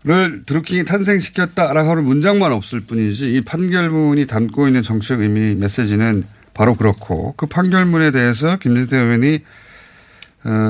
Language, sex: Korean, male